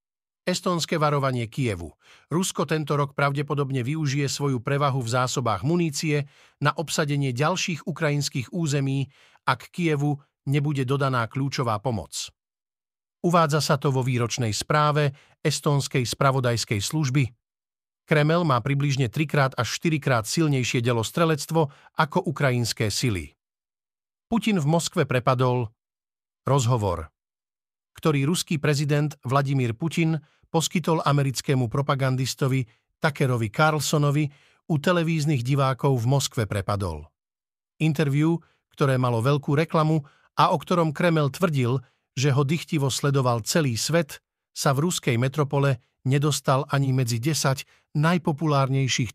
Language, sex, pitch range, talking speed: Slovak, male, 125-155 Hz, 110 wpm